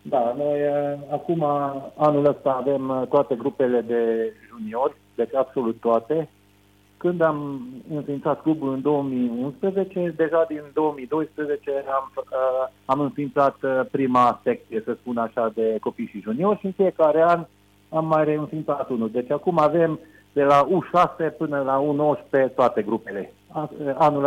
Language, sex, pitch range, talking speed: Romanian, male, 115-145 Hz, 135 wpm